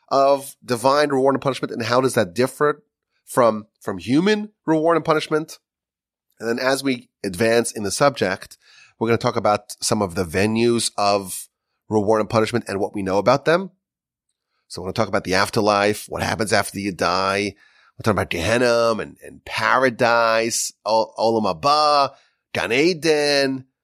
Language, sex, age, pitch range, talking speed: English, male, 30-49, 110-135 Hz, 170 wpm